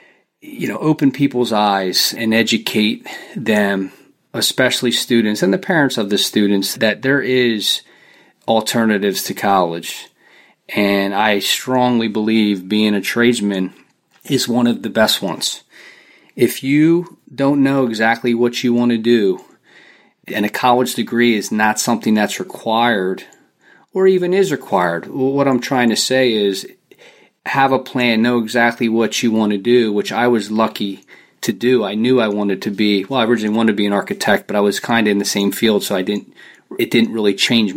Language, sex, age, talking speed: English, male, 40-59, 175 wpm